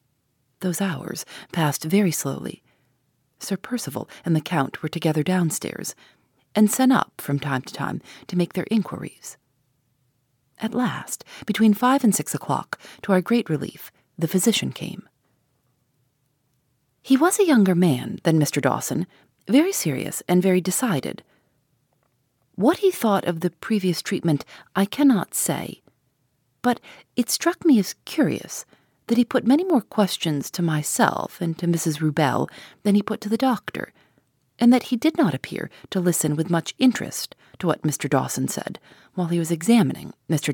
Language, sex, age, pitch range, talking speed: English, female, 40-59, 140-215 Hz, 155 wpm